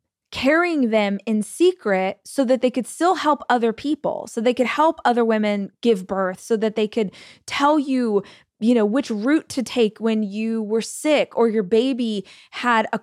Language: English